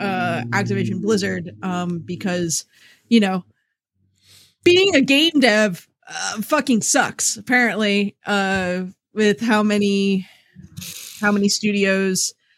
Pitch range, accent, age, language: 185-255 Hz, American, 20-39, English